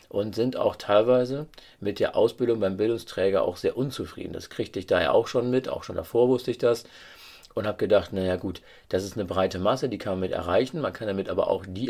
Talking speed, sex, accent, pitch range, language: 235 wpm, male, German, 95-125 Hz, German